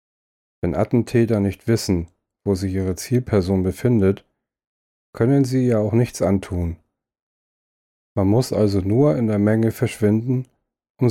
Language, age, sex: German, 40-59, male